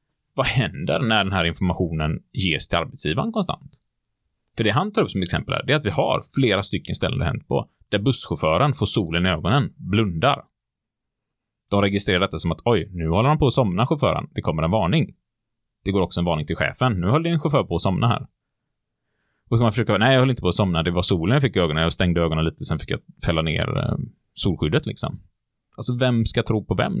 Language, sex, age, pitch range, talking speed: Swedish, male, 30-49, 90-120 Hz, 225 wpm